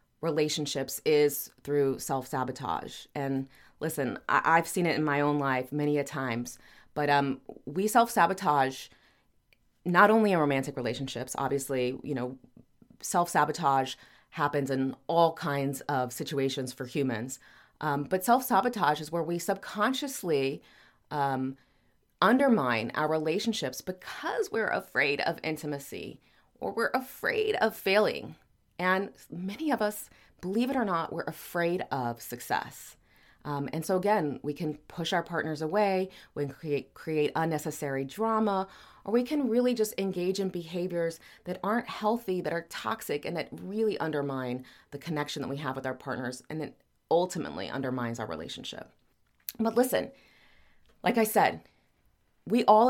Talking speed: 140 wpm